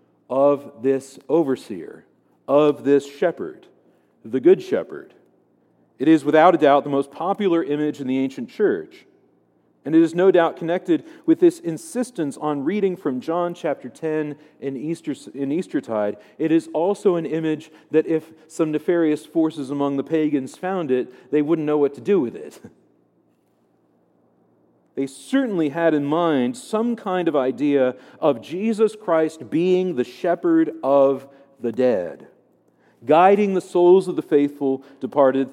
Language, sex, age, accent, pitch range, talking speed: English, male, 40-59, American, 135-185 Hz, 150 wpm